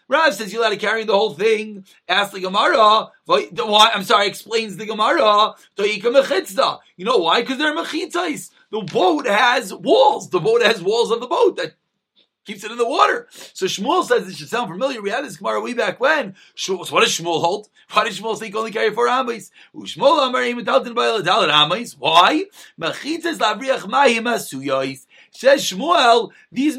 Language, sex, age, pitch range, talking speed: English, male, 30-49, 195-280 Hz, 170 wpm